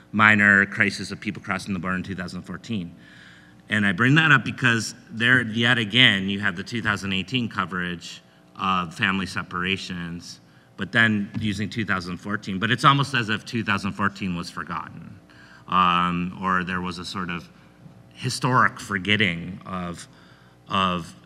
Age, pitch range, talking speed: 30-49, 90-110 Hz, 140 wpm